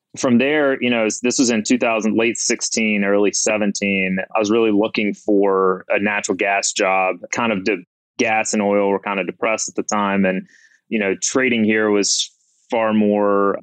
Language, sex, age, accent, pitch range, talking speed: English, male, 30-49, American, 95-110 Hz, 190 wpm